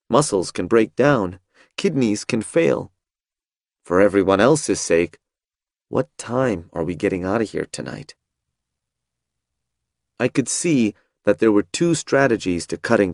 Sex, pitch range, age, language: male, 95-125 Hz, 30-49, Chinese